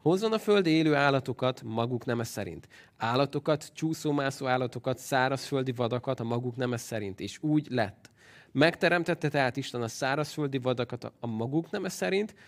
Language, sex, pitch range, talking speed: Hungarian, male, 115-145 Hz, 145 wpm